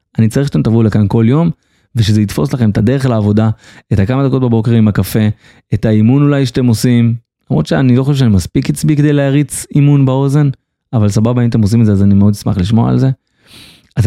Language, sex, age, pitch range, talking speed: Hebrew, male, 30-49, 110-145 Hz, 215 wpm